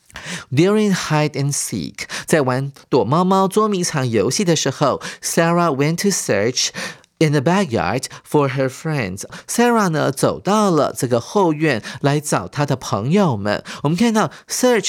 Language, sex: Chinese, male